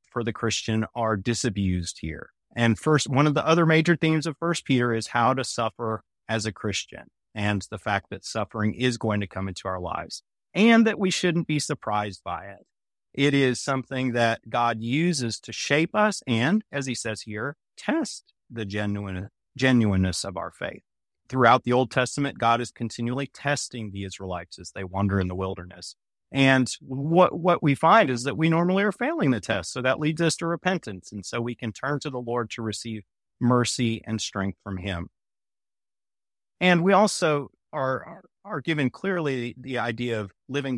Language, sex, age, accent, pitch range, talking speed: English, male, 30-49, American, 105-140 Hz, 185 wpm